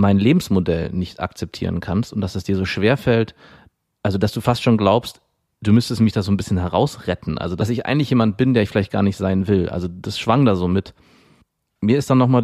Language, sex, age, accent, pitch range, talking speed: German, male, 30-49, German, 100-120 Hz, 230 wpm